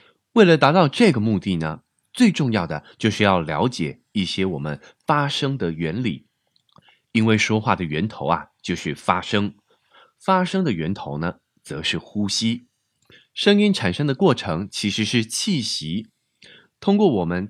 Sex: male